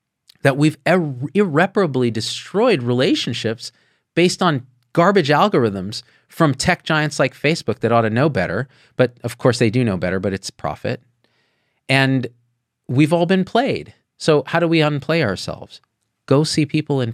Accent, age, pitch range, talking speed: American, 40-59, 110-145 Hz, 155 wpm